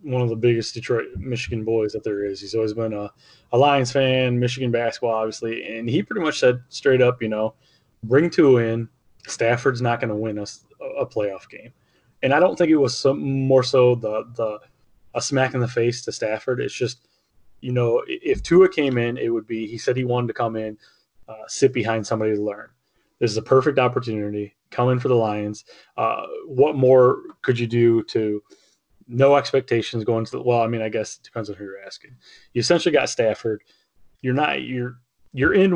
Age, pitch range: 20-39, 110-130 Hz